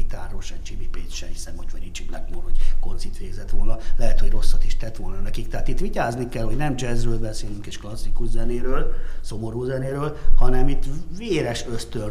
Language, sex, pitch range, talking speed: Hungarian, male, 90-120 Hz, 175 wpm